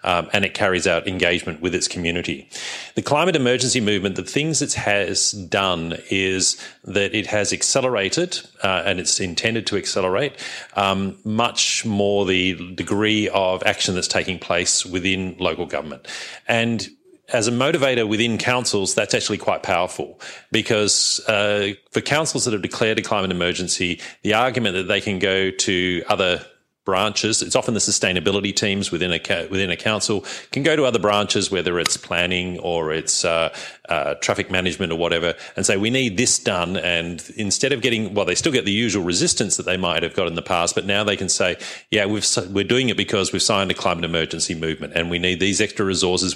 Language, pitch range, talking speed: English, 90-110 Hz, 190 wpm